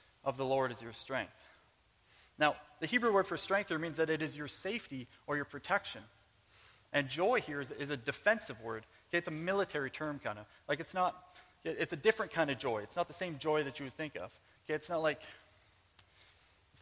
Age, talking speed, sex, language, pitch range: 30-49, 210 wpm, male, English, 130-170 Hz